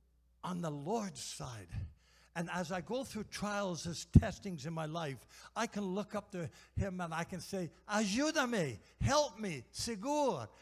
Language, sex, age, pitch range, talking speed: English, male, 60-79, 115-185 Hz, 165 wpm